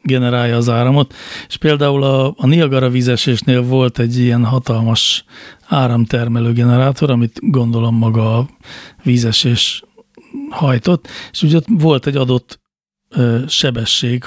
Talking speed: 115 wpm